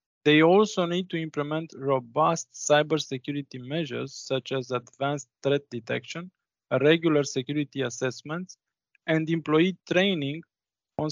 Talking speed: 110 wpm